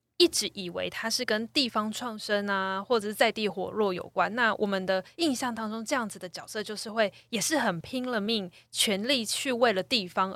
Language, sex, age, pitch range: Chinese, female, 20-39, 190-245 Hz